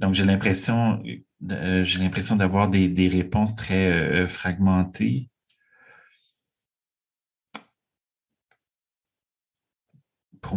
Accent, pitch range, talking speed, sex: Canadian, 95-110 Hz, 60 wpm, male